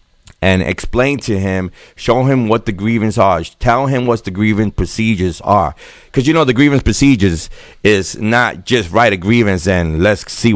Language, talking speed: English, 180 wpm